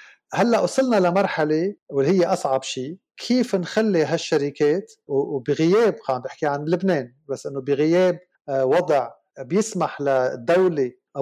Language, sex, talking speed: Arabic, male, 110 wpm